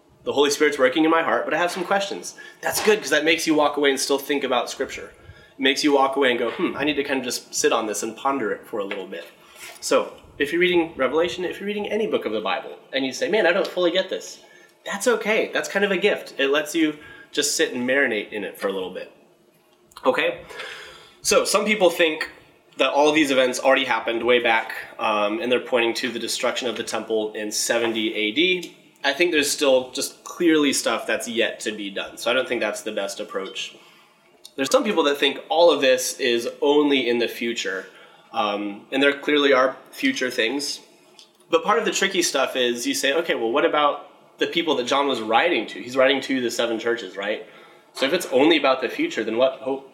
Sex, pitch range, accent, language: male, 125-170 Hz, American, English